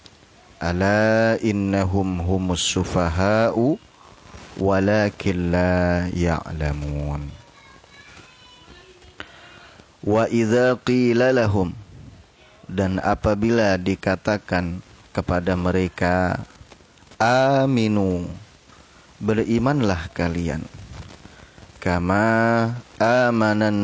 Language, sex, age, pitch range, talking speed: Indonesian, male, 30-49, 90-110 Hz, 50 wpm